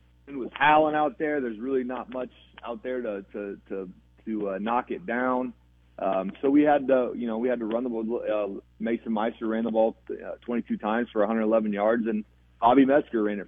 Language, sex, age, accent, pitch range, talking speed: English, male, 30-49, American, 100-120 Hz, 215 wpm